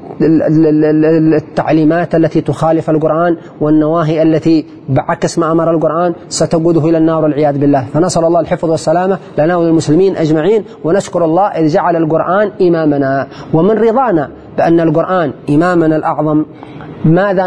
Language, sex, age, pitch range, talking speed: Arabic, male, 30-49, 155-175 Hz, 120 wpm